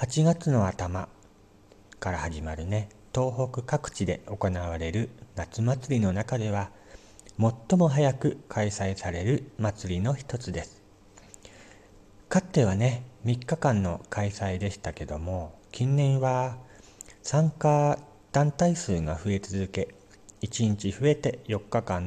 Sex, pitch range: male, 100-125 Hz